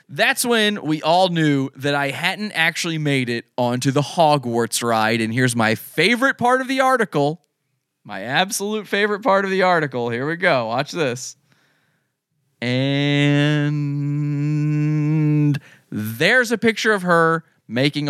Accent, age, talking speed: American, 30-49, 140 wpm